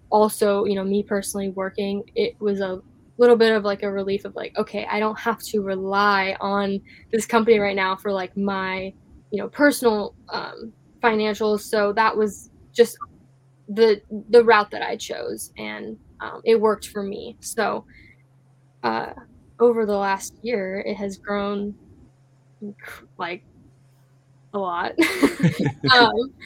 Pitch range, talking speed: 195-220 Hz, 145 wpm